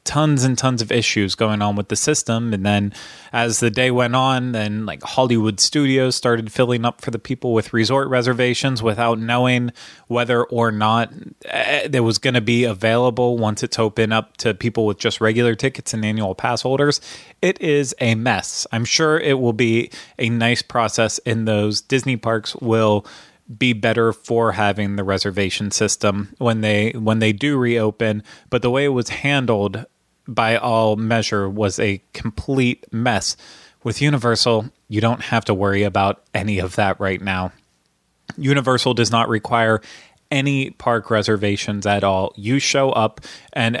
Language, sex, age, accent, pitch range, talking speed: English, male, 20-39, American, 105-125 Hz, 170 wpm